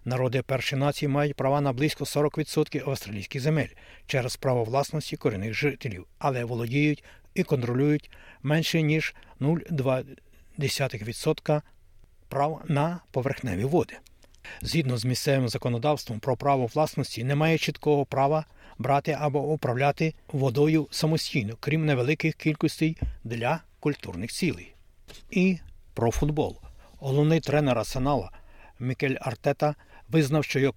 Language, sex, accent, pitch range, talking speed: Ukrainian, male, native, 120-150 Hz, 115 wpm